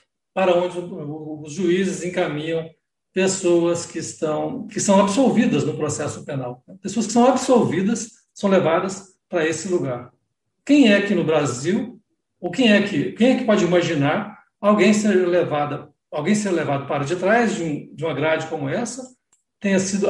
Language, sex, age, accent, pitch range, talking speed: Portuguese, male, 60-79, Brazilian, 160-210 Hz, 145 wpm